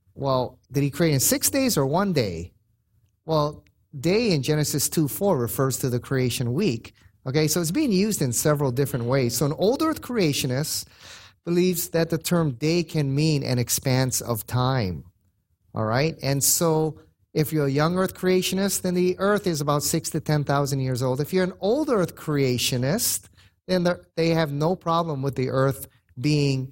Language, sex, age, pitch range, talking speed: English, male, 30-49, 120-150 Hz, 180 wpm